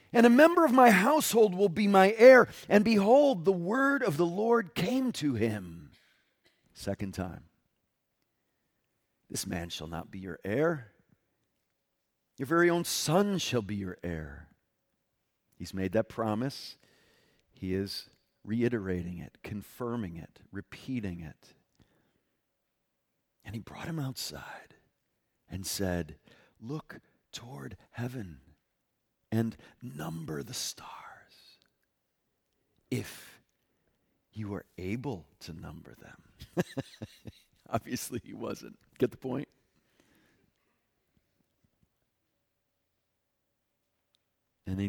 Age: 50-69